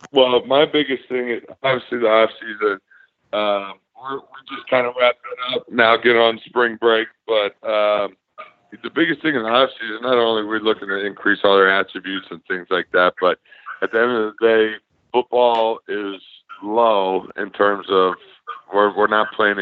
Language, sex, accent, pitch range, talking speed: English, male, American, 95-110 Hz, 185 wpm